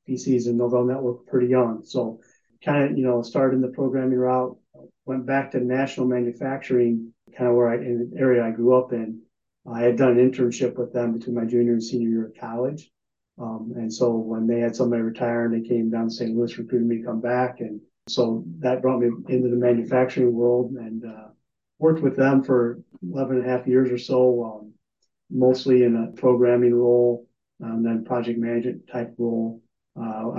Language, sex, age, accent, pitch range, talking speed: English, male, 30-49, American, 115-125 Hz, 200 wpm